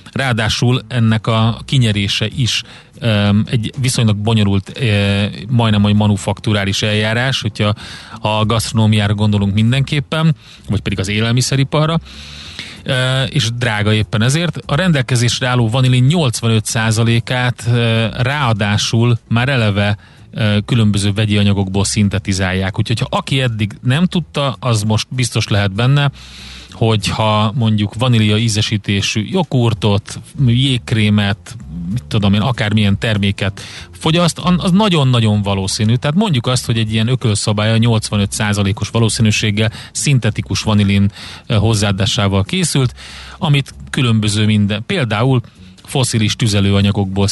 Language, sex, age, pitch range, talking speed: Hungarian, male, 30-49, 100-125 Hz, 105 wpm